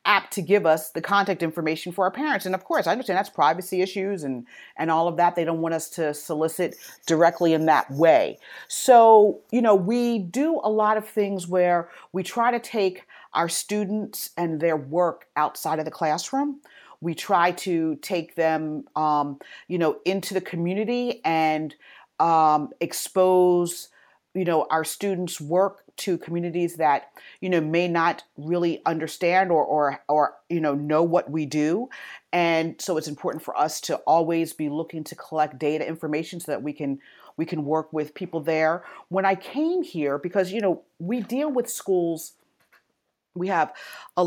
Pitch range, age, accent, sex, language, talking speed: 160-195 Hz, 40-59, American, female, English, 180 wpm